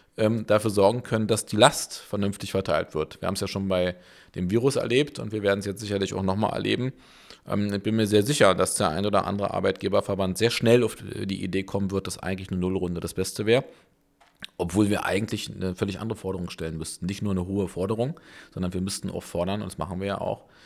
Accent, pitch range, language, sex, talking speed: German, 95-110 Hz, German, male, 225 wpm